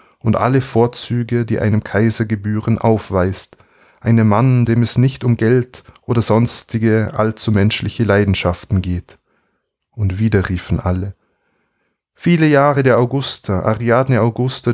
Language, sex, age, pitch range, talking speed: German, male, 20-39, 100-125 Hz, 125 wpm